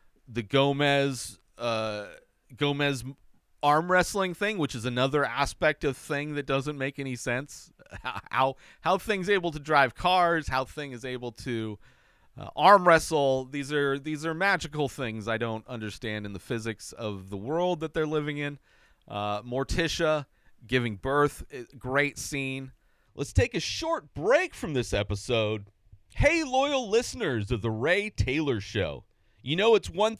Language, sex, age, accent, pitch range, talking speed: English, male, 40-59, American, 115-165 Hz, 155 wpm